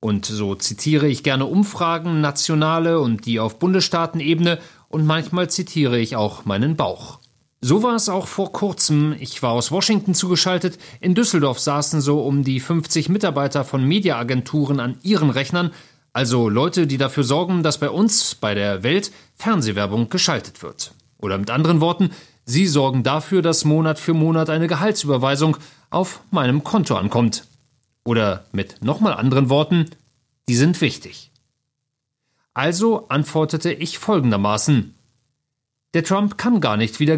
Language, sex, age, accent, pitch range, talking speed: German, male, 40-59, German, 125-170 Hz, 145 wpm